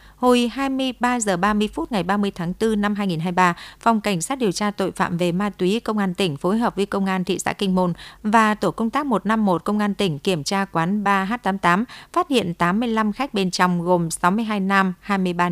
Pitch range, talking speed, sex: 180-225 Hz, 215 wpm, female